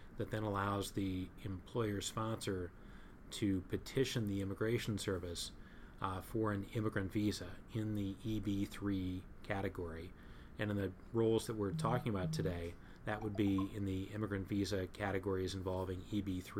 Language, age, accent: English, 30-49, American